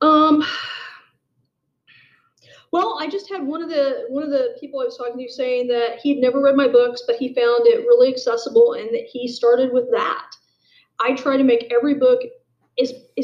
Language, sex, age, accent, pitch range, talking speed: English, female, 40-59, American, 245-350 Hz, 190 wpm